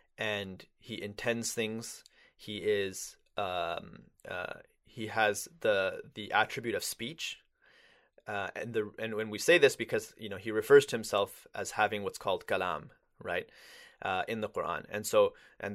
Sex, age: male, 20-39